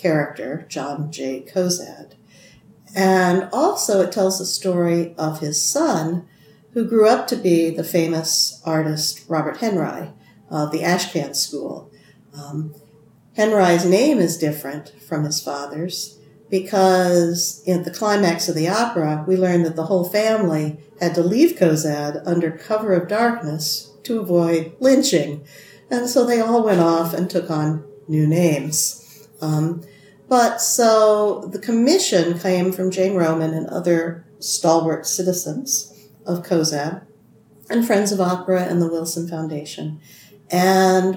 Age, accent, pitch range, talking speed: 50-69, American, 155-195 Hz, 135 wpm